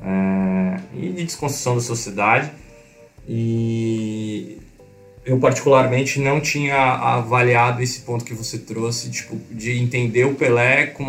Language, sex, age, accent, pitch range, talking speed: Portuguese, male, 20-39, Brazilian, 105-120 Hz, 115 wpm